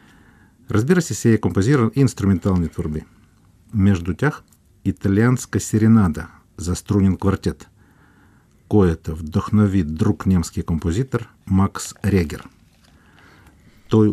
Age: 50-69